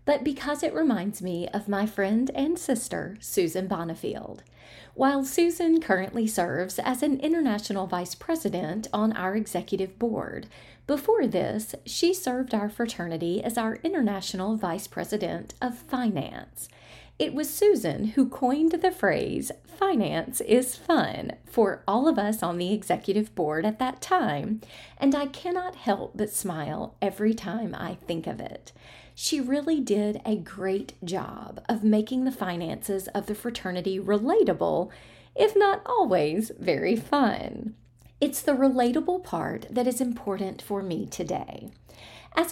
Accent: American